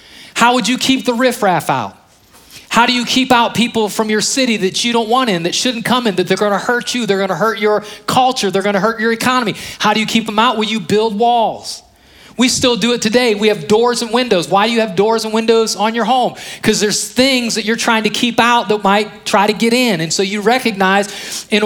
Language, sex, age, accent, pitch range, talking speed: English, male, 30-49, American, 200-235 Hz, 250 wpm